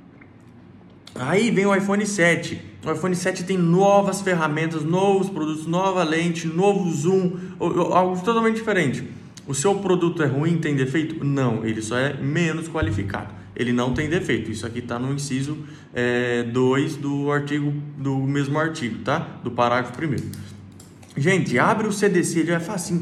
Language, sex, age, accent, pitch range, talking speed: Portuguese, male, 20-39, Brazilian, 140-190 Hz, 155 wpm